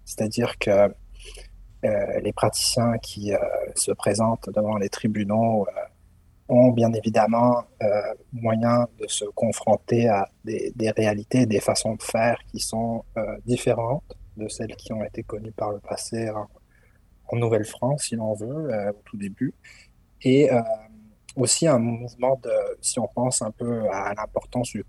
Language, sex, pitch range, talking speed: French, male, 105-125 Hz, 160 wpm